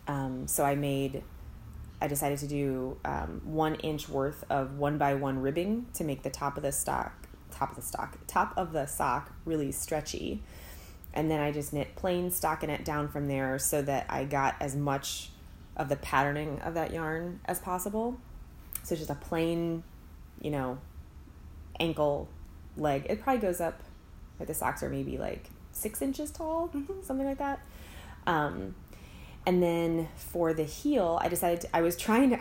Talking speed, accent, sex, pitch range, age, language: 175 wpm, American, female, 130-165 Hz, 20-39, English